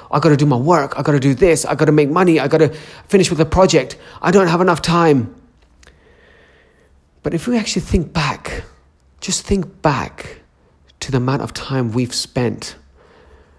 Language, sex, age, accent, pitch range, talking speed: English, male, 30-49, British, 110-145 Hz, 195 wpm